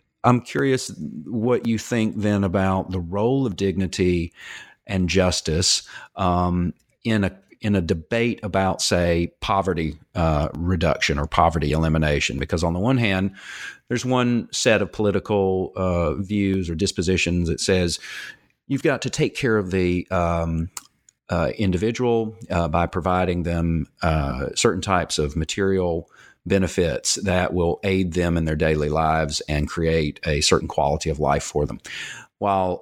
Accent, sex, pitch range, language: American, male, 80-105 Hz, English